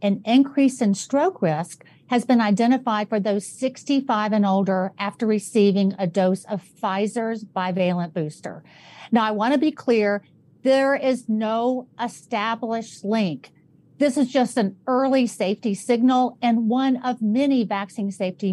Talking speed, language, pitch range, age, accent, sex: 145 wpm, English, 190-245 Hz, 50-69, American, female